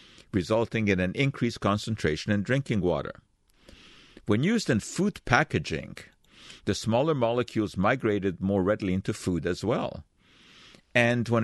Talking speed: 130 wpm